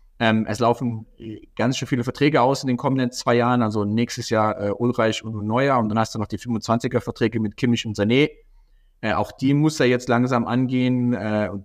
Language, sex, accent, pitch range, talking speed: German, male, German, 110-125 Hz, 190 wpm